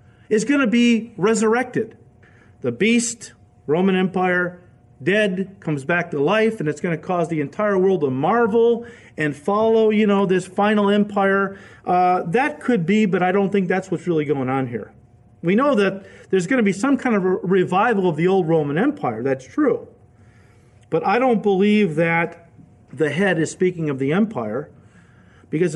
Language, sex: English, male